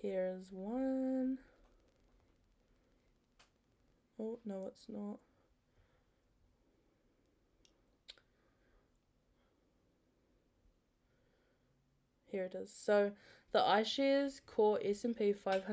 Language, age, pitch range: English, 10-29, 195-250 Hz